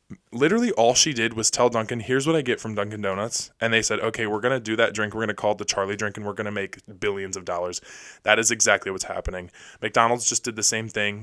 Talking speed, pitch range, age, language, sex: 275 wpm, 105-125 Hz, 20-39, English, male